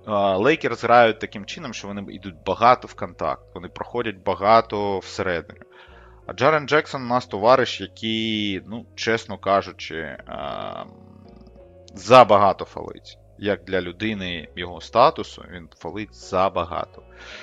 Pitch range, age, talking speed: 90-110 Hz, 30-49, 120 wpm